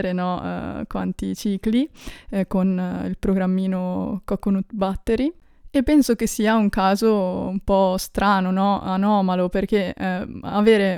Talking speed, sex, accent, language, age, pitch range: 135 wpm, female, native, Italian, 20-39, 185-215 Hz